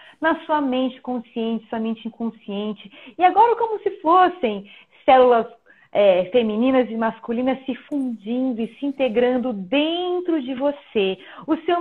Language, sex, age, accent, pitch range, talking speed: Portuguese, female, 30-49, Brazilian, 225-315 Hz, 130 wpm